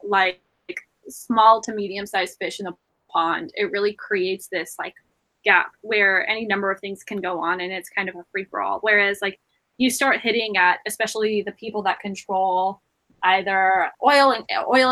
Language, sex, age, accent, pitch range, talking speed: English, female, 10-29, American, 190-220 Hz, 190 wpm